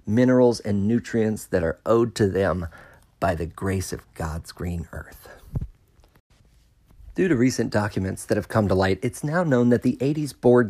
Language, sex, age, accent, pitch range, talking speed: English, male, 40-59, American, 110-160 Hz, 175 wpm